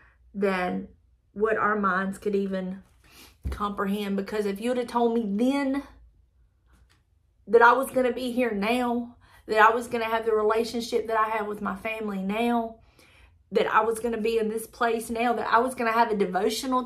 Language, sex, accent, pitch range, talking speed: English, female, American, 195-235 Hz, 200 wpm